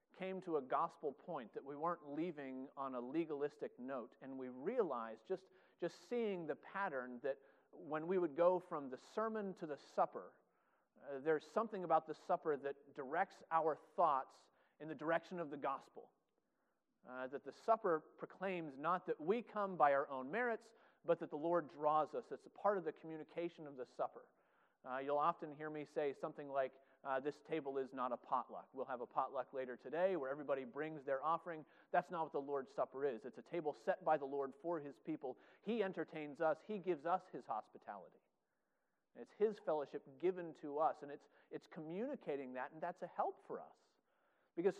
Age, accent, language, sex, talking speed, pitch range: 40-59, American, English, male, 195 wpm, 140-180 Hz